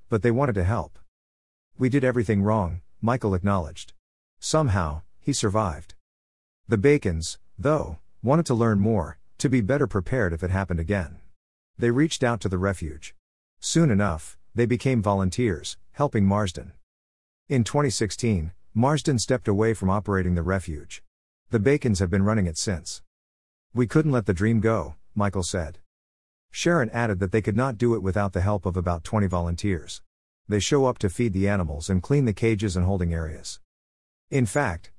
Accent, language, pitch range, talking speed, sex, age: American, English, 85-115 Hz, 165 wpm, male, 50-69